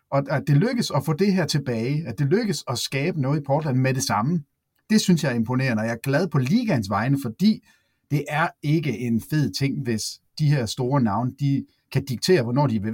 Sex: male